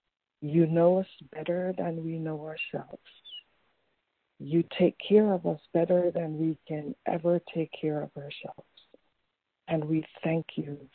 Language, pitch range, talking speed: English, 150-170 Hz, 145 wpm